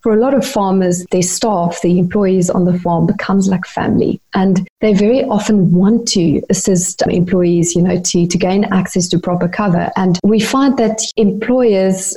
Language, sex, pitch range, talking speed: English, female, 180-215 Hz, 180 wpm